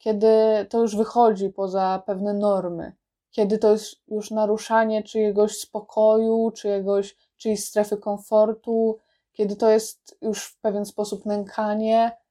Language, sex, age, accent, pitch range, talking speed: Polish, female, 20-39, native, 205-240 Hz, 120 wpm